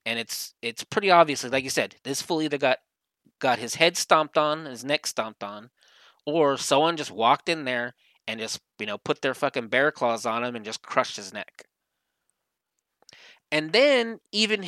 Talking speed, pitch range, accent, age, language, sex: 190 wpm, 125-160 Hz, American, 20-39, English, male